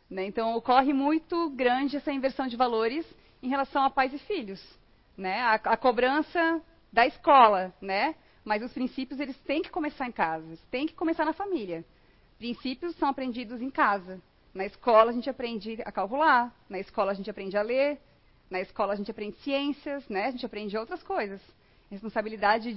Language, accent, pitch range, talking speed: Portuguese, Brazilian, 205-275 Hz, 175 wpm